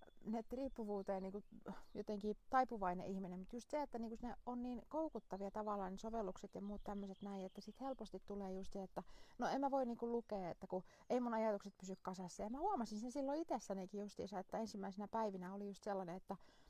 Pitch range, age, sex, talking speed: 190-235 Hz, 30-49, female, 195 wpm